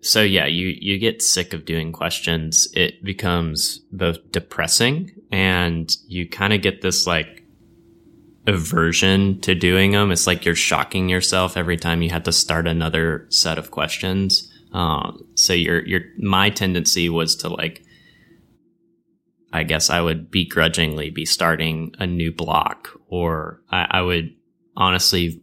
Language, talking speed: English, 150 wpm